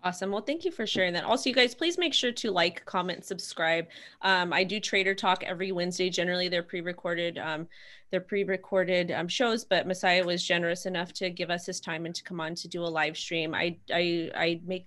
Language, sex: English, female